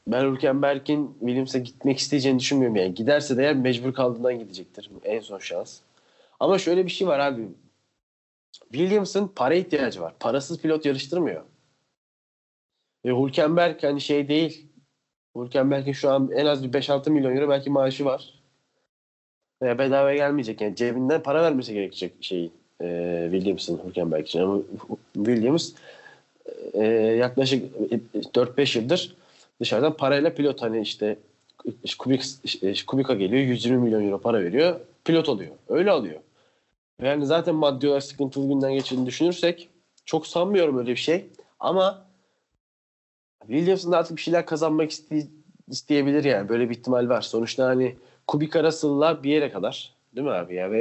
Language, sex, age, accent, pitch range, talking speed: Turkish, male, 30-49, native, 125-155 Hz, 145 wpm